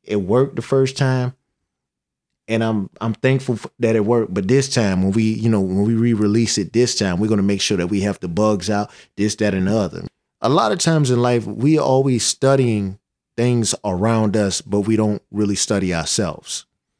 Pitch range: 100-120 Hz